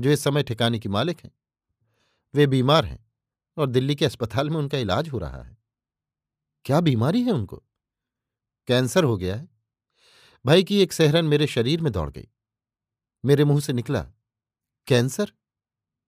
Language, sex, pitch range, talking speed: Hindi, male, 115-145 Hz, 155 wpm